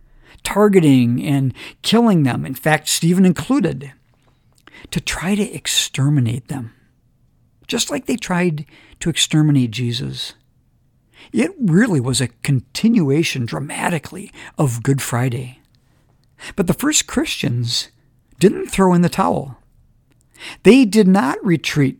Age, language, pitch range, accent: 50-69, English, 135-205 Hz, American